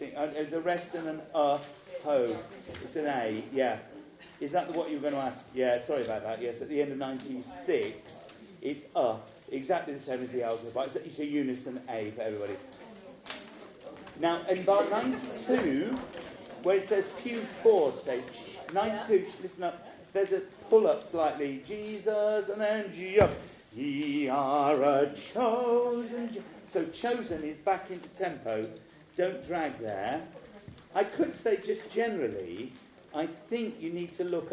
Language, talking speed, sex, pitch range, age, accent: English, 150 wpm, male, 140-210 Hz, 40-59, British